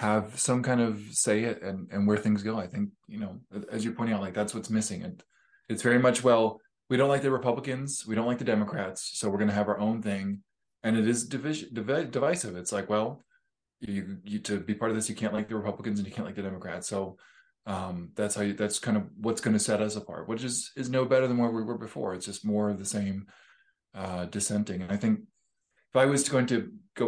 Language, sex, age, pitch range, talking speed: English, male, 20-39, 105-125 Hz, 250 wpm